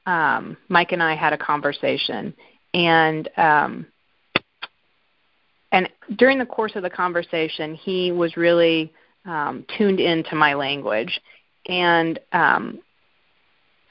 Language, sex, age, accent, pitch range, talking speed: English, female, 30-49, American, 160-210 Hz, 115 wpm